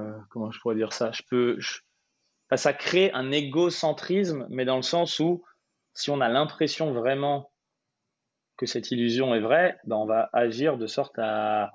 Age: 20-39